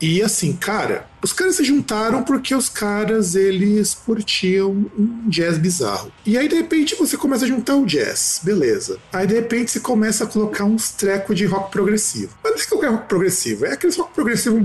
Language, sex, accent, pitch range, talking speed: Portuguese, male, Brazilian, 170-275 Hz, 200 wpm